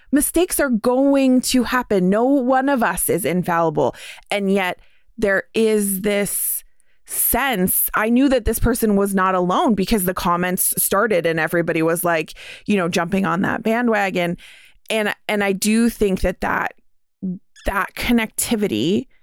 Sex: female